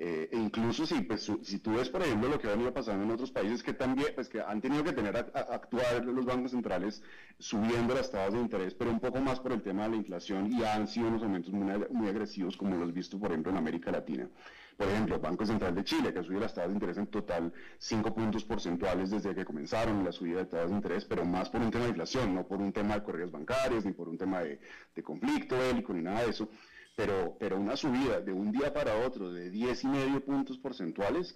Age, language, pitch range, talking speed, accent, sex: 30-49, Spanish, 95-120 Hz, 250 wpm, Colombian, male